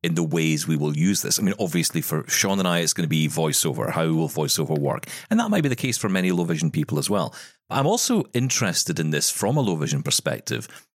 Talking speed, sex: 250 wpm, male